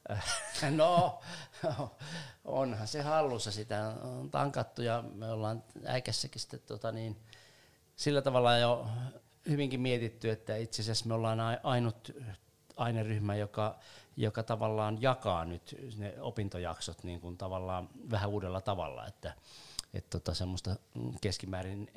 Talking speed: 115 wpm